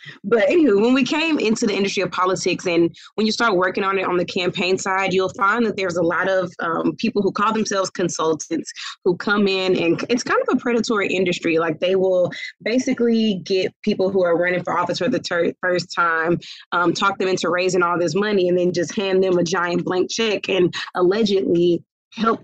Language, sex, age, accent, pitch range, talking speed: English, female, 20-39, American, 175-200 Hz, 210 wpm